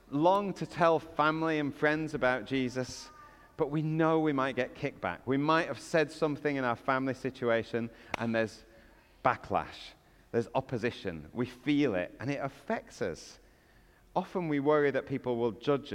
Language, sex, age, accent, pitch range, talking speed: English, male, 40-59, British, 120-160 Hz, 165 wpm